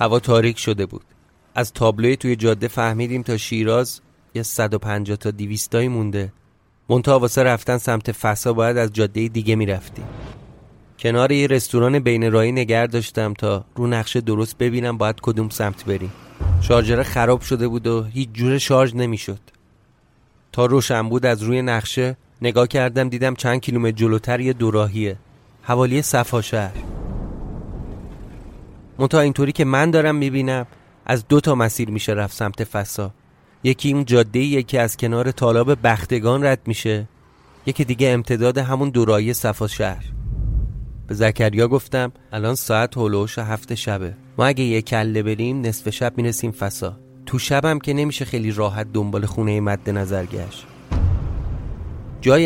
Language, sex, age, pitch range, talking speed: Persian, male, 30-49, 105-125 Hz, 145 wpm